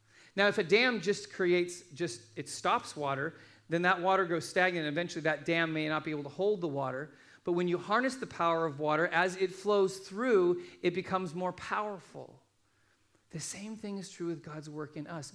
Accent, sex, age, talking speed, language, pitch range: American, male, 40-59, 205 wpm, English, 160-205 Hz